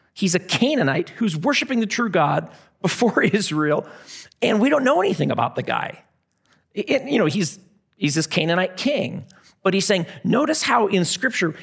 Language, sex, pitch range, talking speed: English, male, 155-195 Hz, 170 wpm